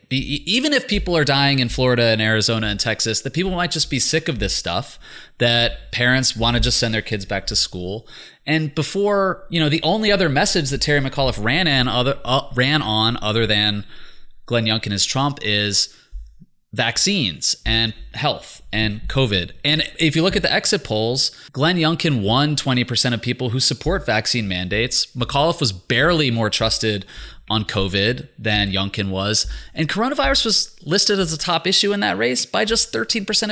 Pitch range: 110-155 Hz